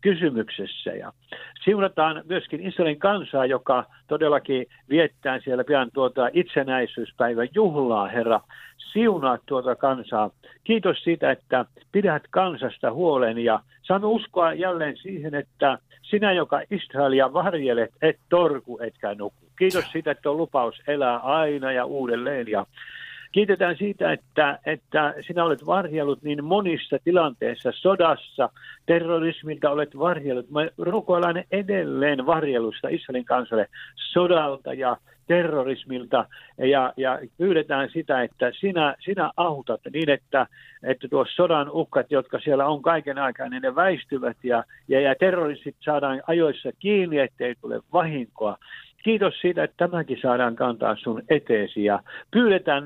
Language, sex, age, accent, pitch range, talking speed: Finnish, male, 60-79, native, 130-180 Hz, 130 wpm